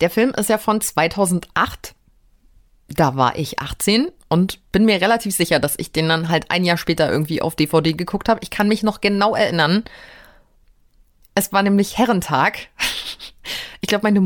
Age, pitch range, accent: 30-49, 180-235 Hz, German